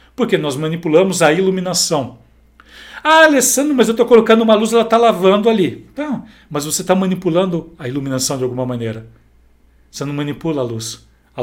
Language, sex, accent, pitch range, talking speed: Portuguese, male, Brazilian, 145-200 Hz, 175 wpm